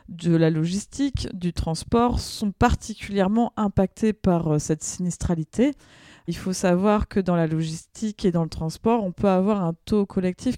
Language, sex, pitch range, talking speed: French, female, 175-225 Hz, 160 wpm